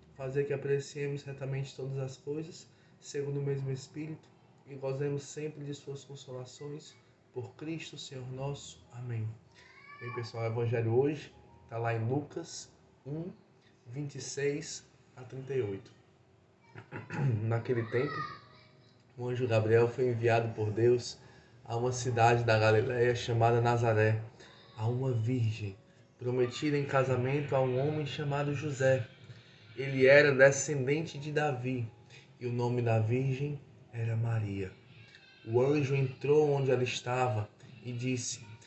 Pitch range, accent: 120-140 Hz, Brazilian